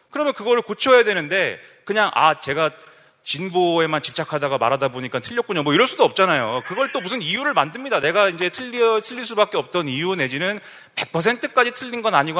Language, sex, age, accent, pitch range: Korean, male, 30-49, native, 140-210 Hz